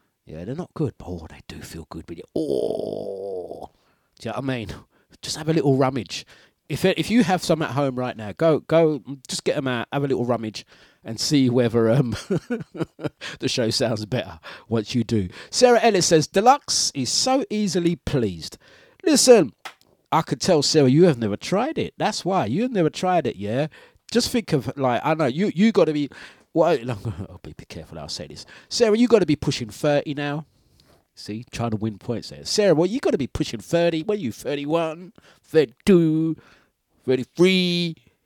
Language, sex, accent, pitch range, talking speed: English, male, British, 115-180 Hz, 200 wpm